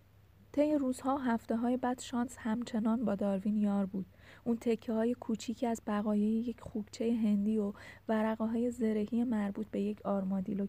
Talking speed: 145 wpm